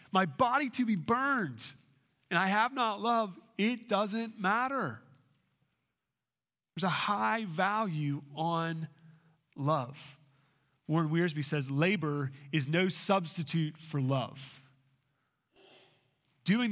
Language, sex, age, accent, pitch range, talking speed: English, male, 30-49, American, 140-185 Hz, 105 wpm